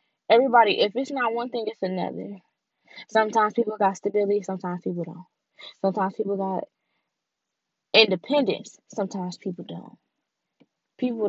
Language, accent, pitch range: English, American, 170-205 Hz